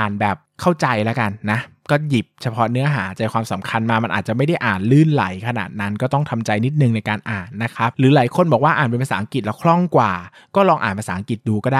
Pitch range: 105-135 Hz